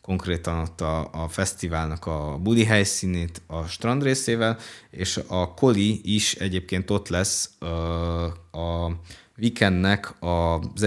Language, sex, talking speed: Hungarian, male, 115 wpm